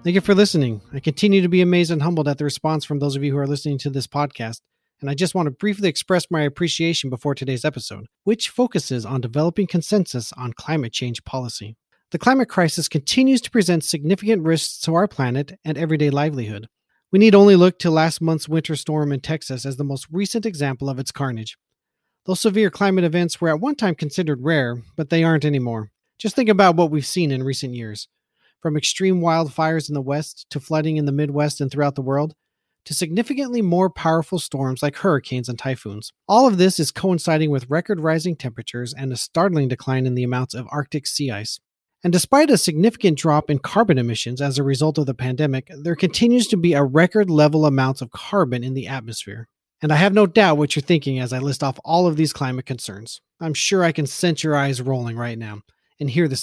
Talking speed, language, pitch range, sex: 215 wpm, English, 130-175 Hz, male